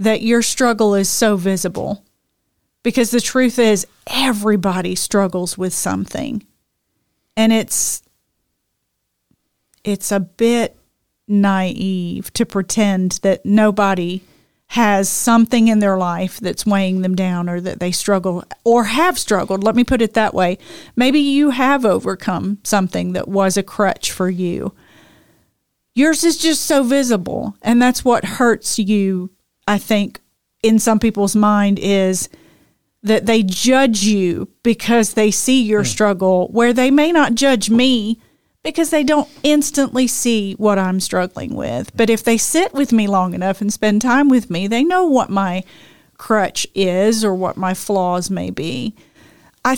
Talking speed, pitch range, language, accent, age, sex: 150 wpm, 195-245 Hz, English, American, 40-59, female